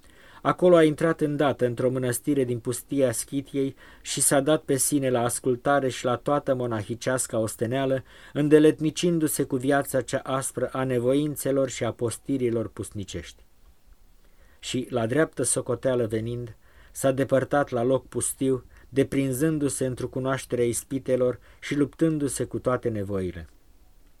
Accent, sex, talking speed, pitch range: native, male, 125 wpm, 120-140 Hz